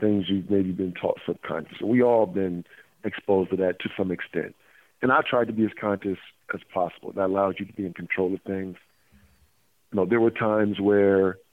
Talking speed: 205 wpm